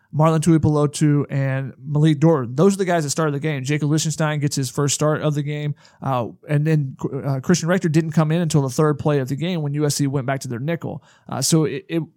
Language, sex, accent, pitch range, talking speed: English, male, American, 150-175 Hz, 240 wpm